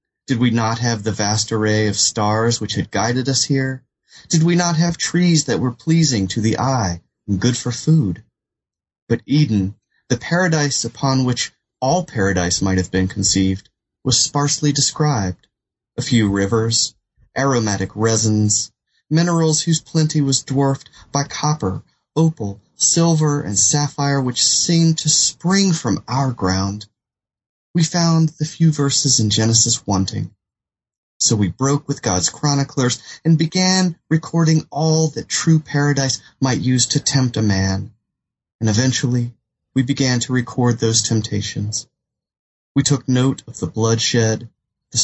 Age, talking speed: 30-49, 145 wpm